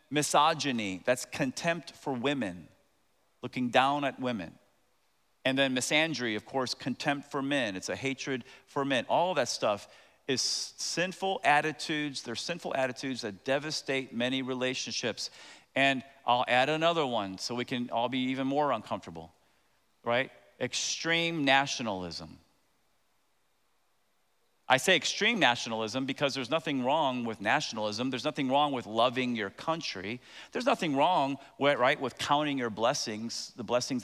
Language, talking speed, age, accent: English, 140 wpm, 40-59, American